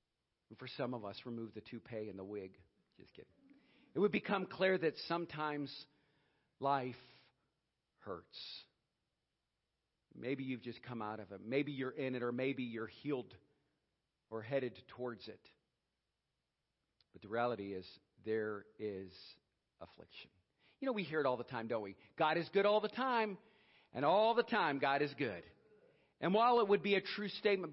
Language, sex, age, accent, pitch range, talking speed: English, male, 50-69, American, 110-160 Hz, 165 wpm